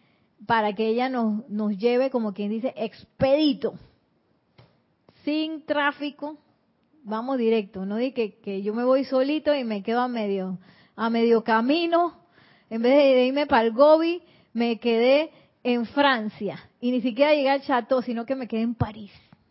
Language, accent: Spanish, American